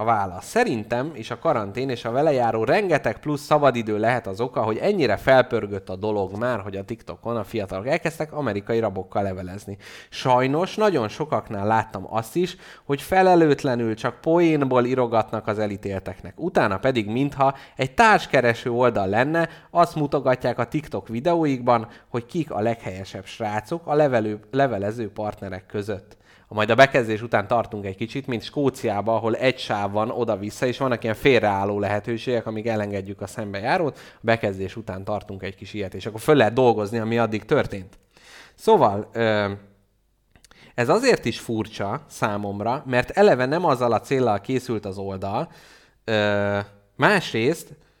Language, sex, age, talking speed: Hungarian, male, 30-49, 145 wpm